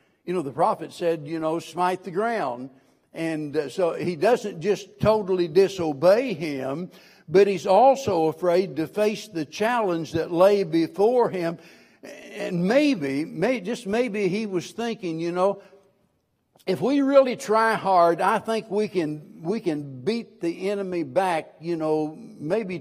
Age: 60-79